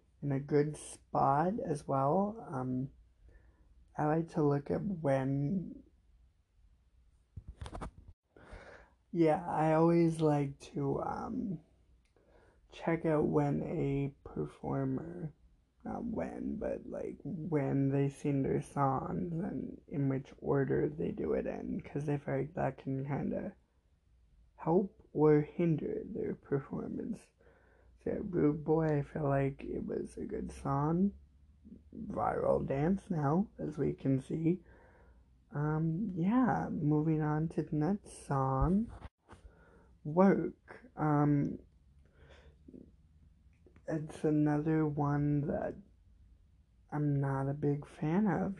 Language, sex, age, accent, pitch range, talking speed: English, male, 20-39, American, 100-165 Hz, 110 wpm